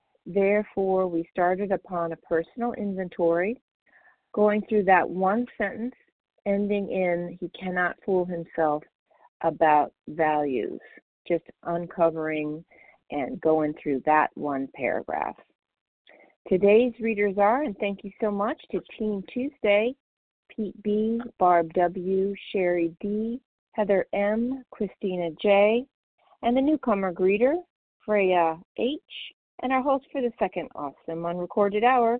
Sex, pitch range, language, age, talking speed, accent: female, 170-225 Hz, English, 40-59, 120 wpm, American